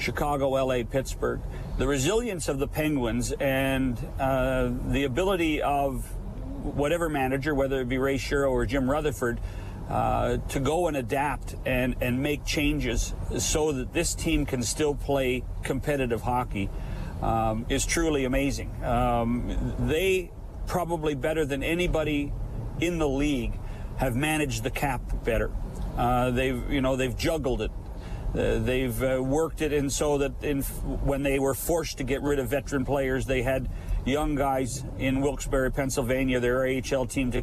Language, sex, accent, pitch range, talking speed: English, male, American, 125-150 Hz, 150 wpm